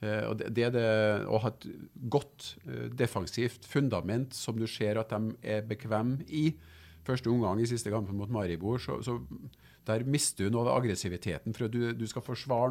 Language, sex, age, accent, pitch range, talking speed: English, male, 50-69, Norwegian, 100-120 Hz, 200 wpm